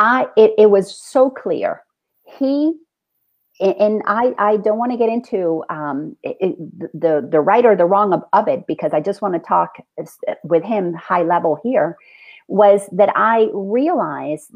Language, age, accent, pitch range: English, 40-59, American, 165-245 Hz